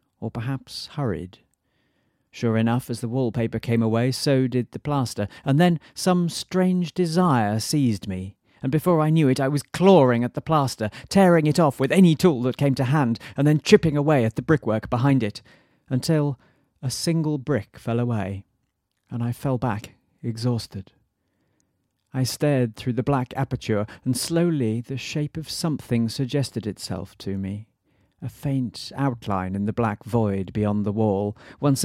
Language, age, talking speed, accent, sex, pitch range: English, 40-59, 170 wpm, British, male, 110-145 Hz